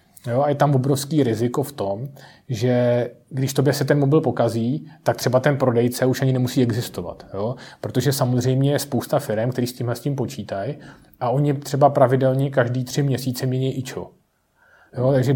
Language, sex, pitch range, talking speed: Czech, male, 115-130 Hz, 175 wpm